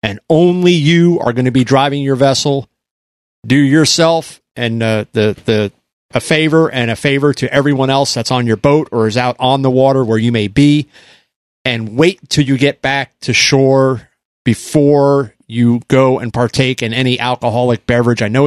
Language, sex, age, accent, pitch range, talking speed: English, male, 40-59, American, 125-150 Hz, 185 wpm